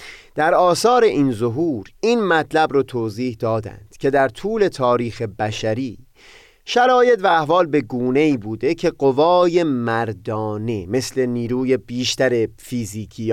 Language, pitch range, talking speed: Persian, 120-170 Hz, 120 wpm